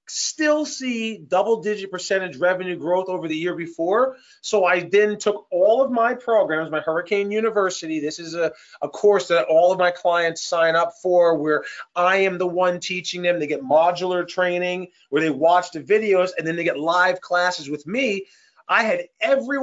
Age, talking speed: 30-49, 185 wpm